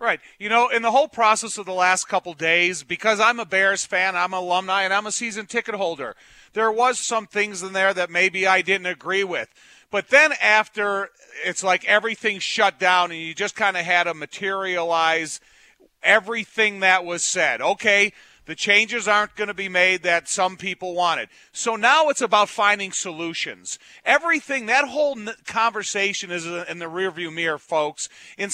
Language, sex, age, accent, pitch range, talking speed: English, male, 40-59, American, 180-215 Hz, 185 wpm